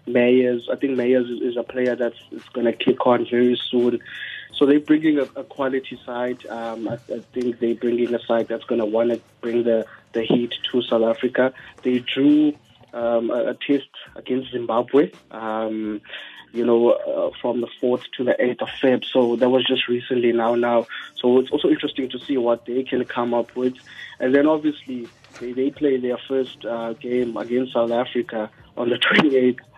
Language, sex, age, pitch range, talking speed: English, male, 20-39, 120-130 Hz, 195 wpm